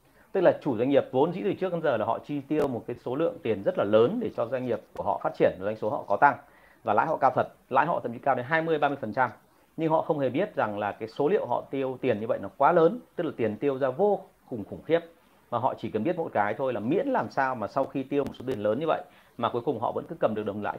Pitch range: 115-155 Hz